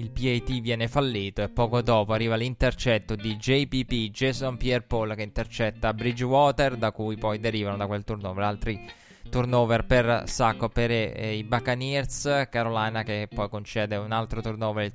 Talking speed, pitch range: 155 wpm, 110-130 Hz